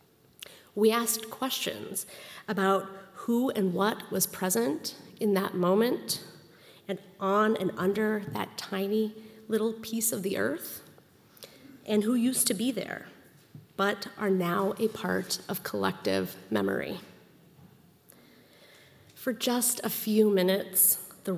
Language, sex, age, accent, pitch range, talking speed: English, female, 30-49, American, 190-220 Hz, 120 wpm